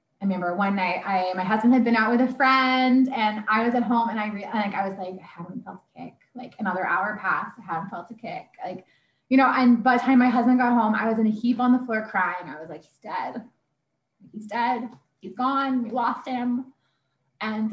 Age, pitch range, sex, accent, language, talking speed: 20-39, 205-250 Hz, female, American, English, 240 wpm